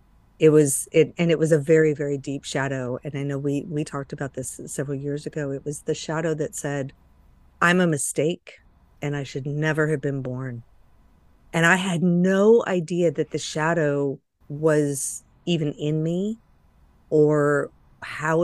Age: 40-59